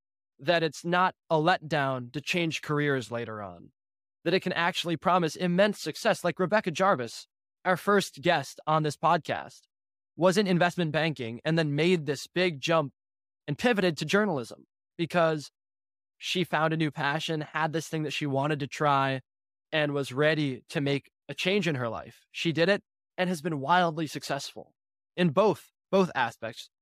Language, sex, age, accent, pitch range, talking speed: English, male, 20-39, American, 135-175 Hz, 170 wpm